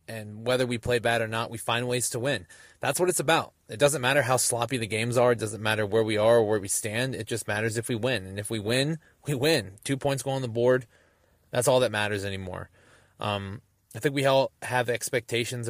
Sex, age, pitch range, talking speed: male, 20-39, 105-130 Hz, 245 wpm